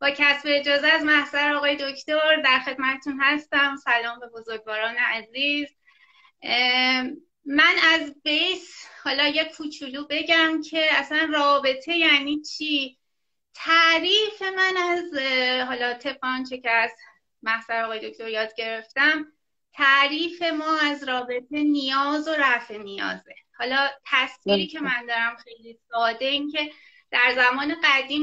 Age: 30-49